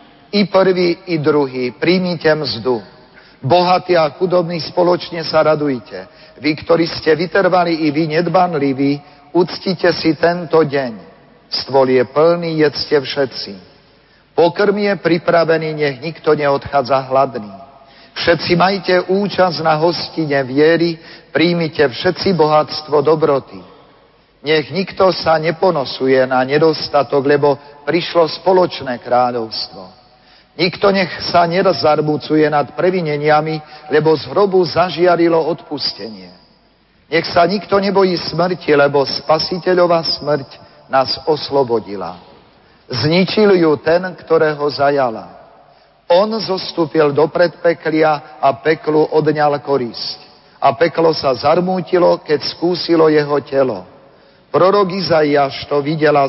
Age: 50-69